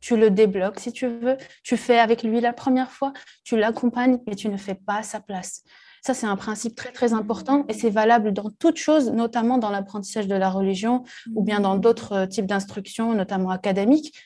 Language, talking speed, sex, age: French, 205 wpm, female, 20-39